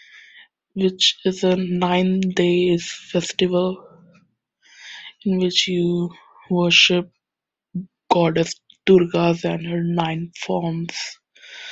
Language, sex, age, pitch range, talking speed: English, female, 20-39, 170-185 Hz, 80 wpm